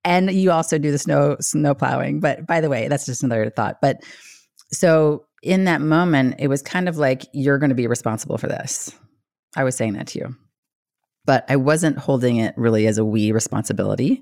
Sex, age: female, 30-49